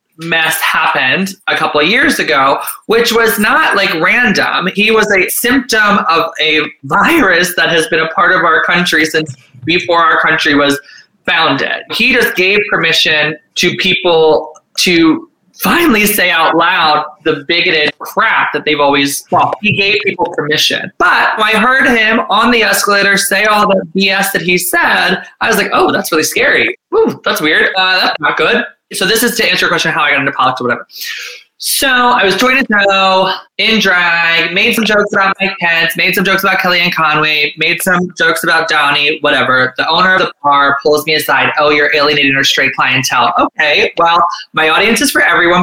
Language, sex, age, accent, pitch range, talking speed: English, male, 20-39, American, 160-210 Hz, 190 wpm